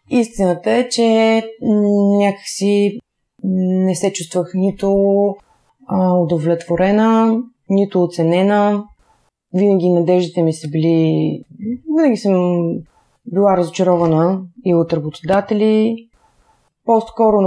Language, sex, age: Bulgarian, female, 30-49